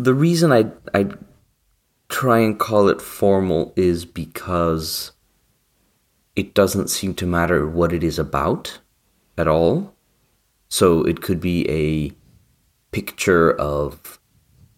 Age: 30-49